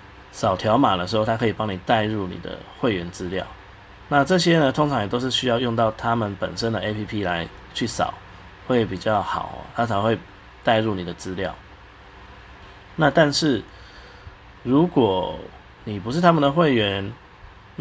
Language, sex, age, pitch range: Chinese, male, 30-49, 95-120 Hz